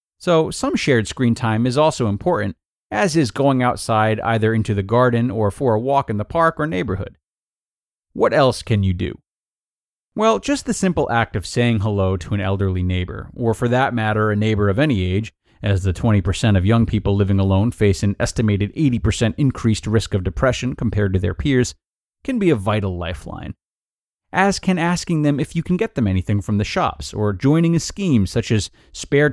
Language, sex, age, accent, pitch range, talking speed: English, male, 30-49, American, 100-130 Hz, 195 wpm